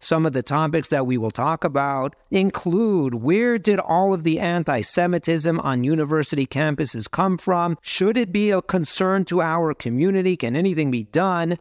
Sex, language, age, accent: male, English, 50-69, American